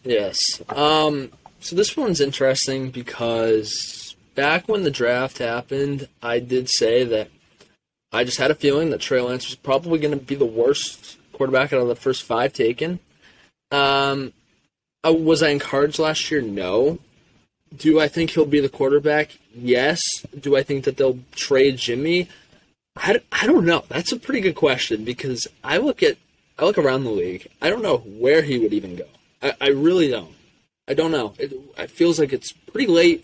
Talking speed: 170 wpm